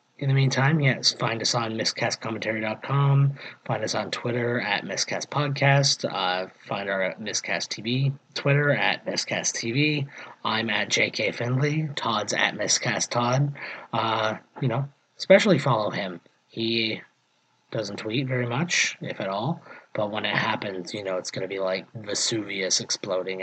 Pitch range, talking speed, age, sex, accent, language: 110-140 Hz, 150 wpm, 30-49, male, American, English